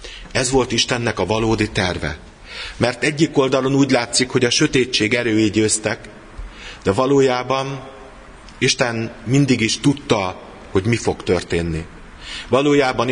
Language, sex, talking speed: Hungarian, male, 120 wpm